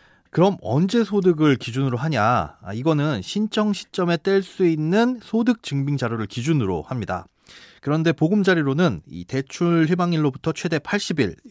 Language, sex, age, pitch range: Korean, male, 30-49, 115-170 Hz